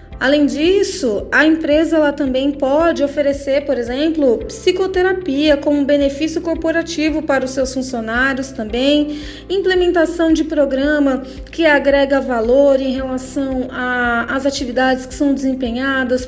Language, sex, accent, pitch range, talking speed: Portuguese, female, Brazilian, 265-315 Hz, 115 wpm